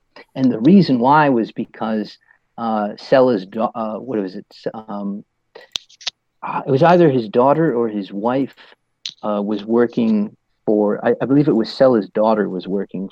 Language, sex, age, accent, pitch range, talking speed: English, male, 40-59, American, 105-155 Hz, 160 wpm